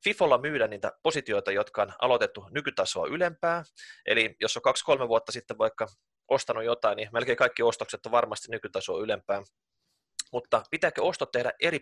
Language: Finnish